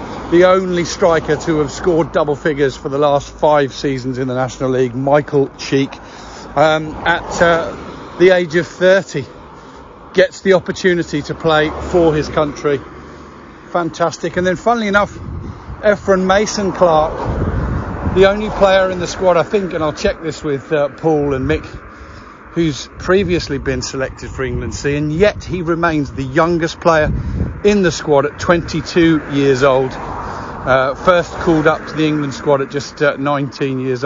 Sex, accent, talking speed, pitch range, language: male, British, 160 wpm, 135-170 Hz, English